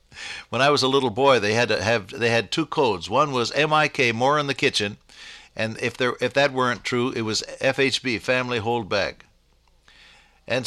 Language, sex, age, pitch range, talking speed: English, male, 60-79, 110-150 Hz, 220 wpm